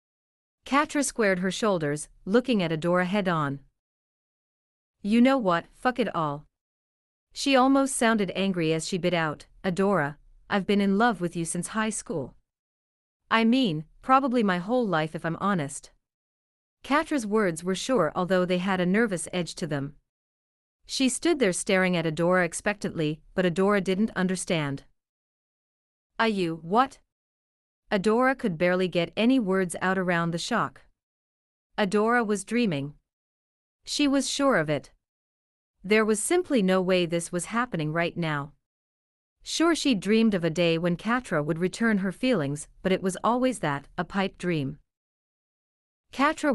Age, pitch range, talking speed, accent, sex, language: 40-59, 150-220 Hz, 150 wpm, American, female, English